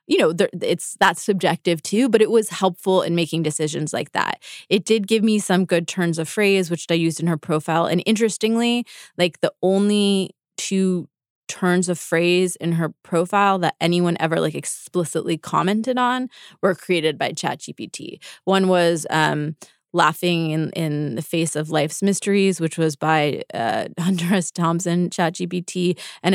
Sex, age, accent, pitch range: female, 20-39, American, 160-195 Hz